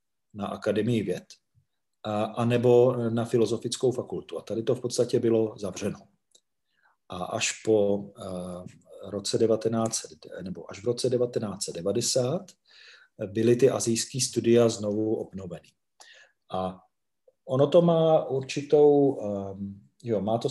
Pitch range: 100-120 Hz